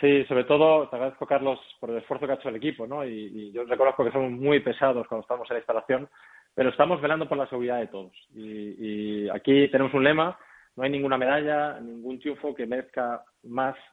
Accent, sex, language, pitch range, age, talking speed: Spanish, male, Spanish, 120-150 Hz, 20-39, 220 wpm